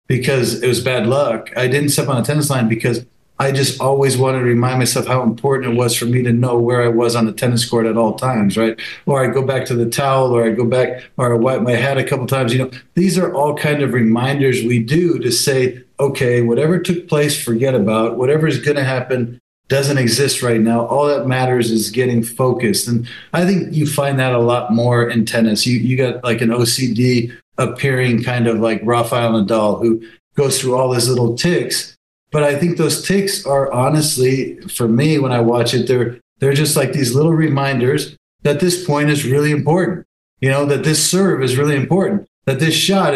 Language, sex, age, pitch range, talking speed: English, male, 50-69, 120-140 Hz, 215 wpm